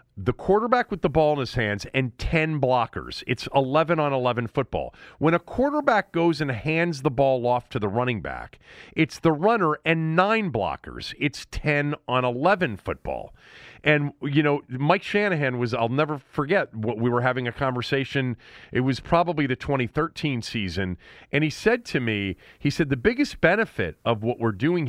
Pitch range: 120-170 Hz